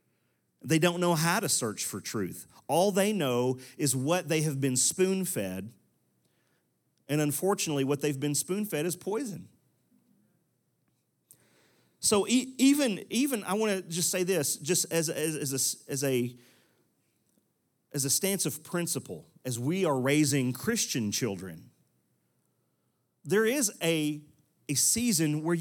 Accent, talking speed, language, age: American, 140 wpm, English, 40-59